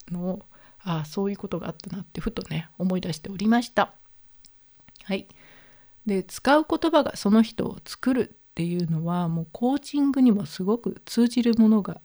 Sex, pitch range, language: female, 185-235 Hz, Japanese